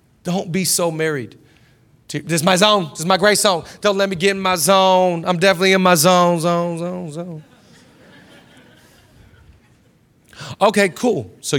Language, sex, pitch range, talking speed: English, male, 130-185 Hz, 160 wpm